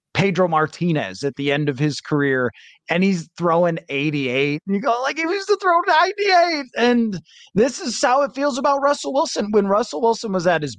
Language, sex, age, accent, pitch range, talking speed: English, male, 30-49, American, 150-210 Hz, 200 wpm